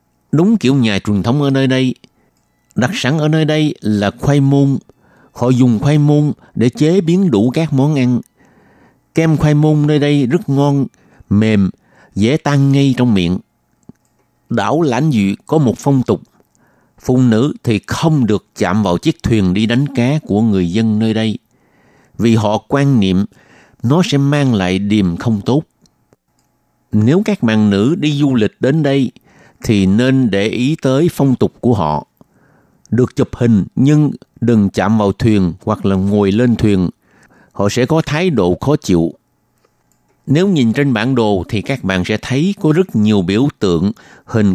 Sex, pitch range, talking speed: male, 105-150 Hz, 175 wpm